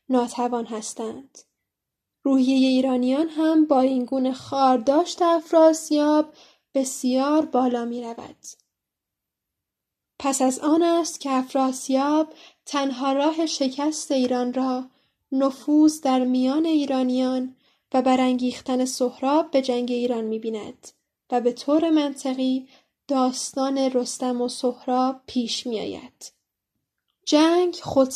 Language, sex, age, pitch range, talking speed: Persian, female, 10-29, 255-300 Hz, 105 wpm